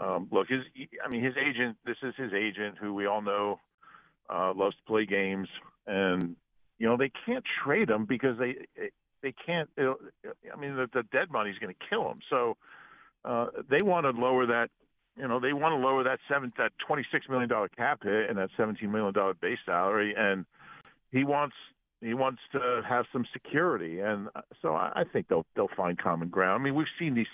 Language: English